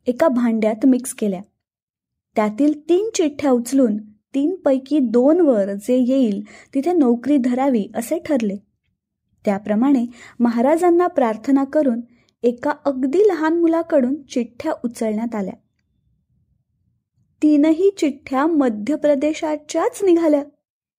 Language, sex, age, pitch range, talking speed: Marathi, female, 20-39, 225-285 Hz, 95 wpm